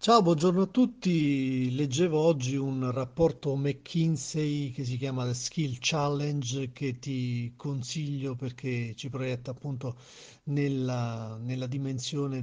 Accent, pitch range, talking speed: native, 125-155 Hz, 120 wpm